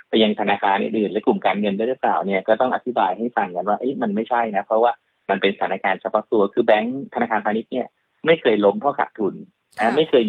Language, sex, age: Thai, male, 20-39